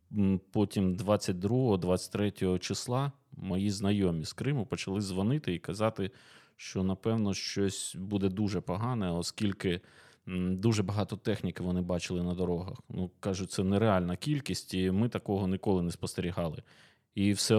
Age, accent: 20-39, native